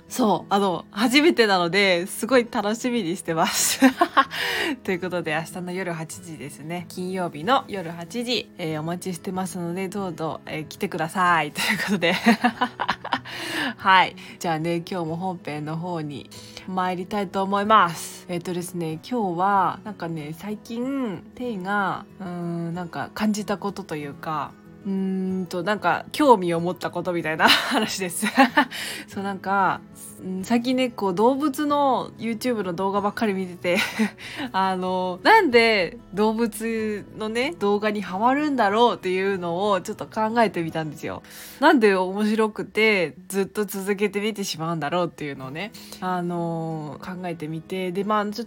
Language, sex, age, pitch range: Japanese, female, 20-39, 175-220 Hz